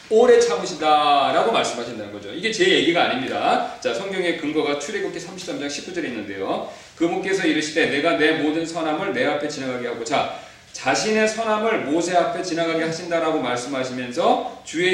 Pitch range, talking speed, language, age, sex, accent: 155-195 Hz, 135 wpm, English, 40-59, male, Korean